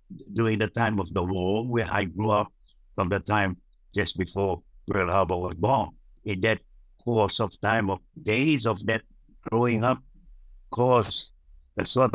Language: English